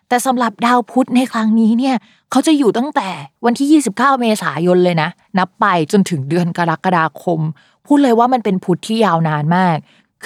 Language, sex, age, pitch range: Thai, female, 20-39, 170-235 Hz